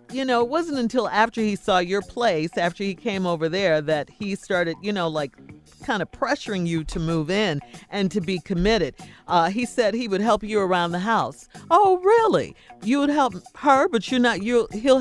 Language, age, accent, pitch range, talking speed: English, 40-59, American, 165-240 Hz, 210 wpm